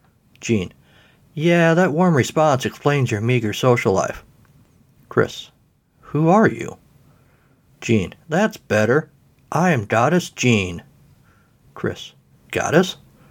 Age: 50-69